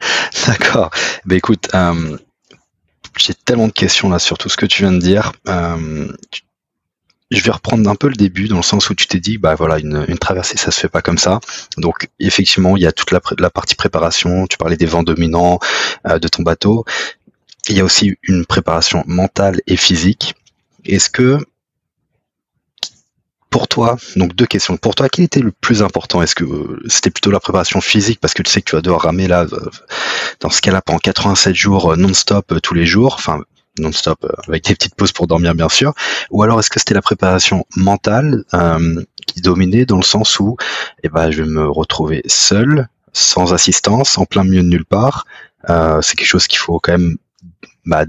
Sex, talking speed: male, 200 wpm